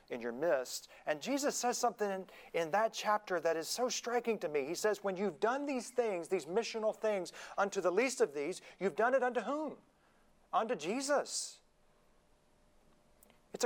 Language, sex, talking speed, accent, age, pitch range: English, male, 175 wpm, American, 40-59, 180-250 Hz